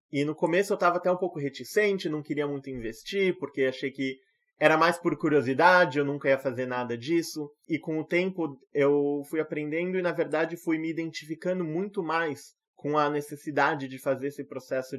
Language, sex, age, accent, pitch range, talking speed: Portuguese, male, 20-39, Brazilian, 130-165 Hz, 190 wpm